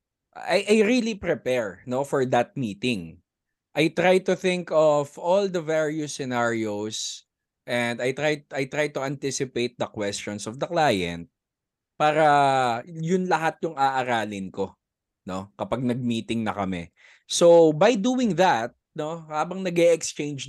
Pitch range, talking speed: 105-170 Hz, 135 wpm